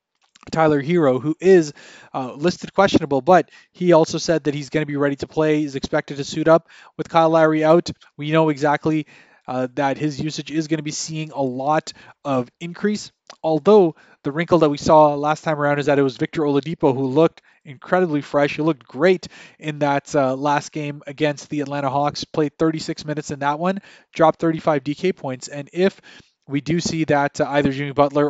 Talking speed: 200 wpm